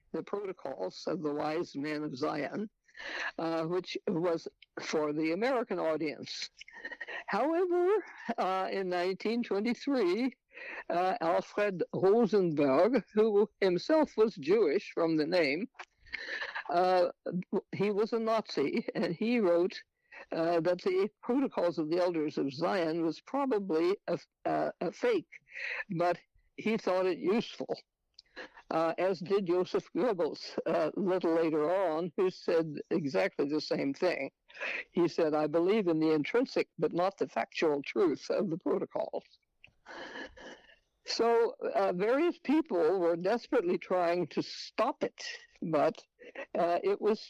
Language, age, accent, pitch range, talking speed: English, 60-79, American, 170-280 Hz, 130 wpm